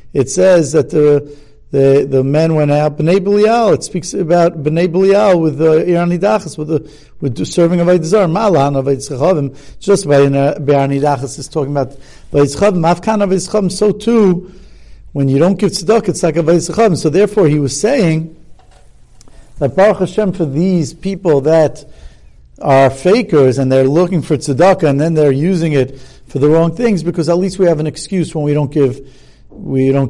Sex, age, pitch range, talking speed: male, 60-79, 135-175 Hz, 175 wpm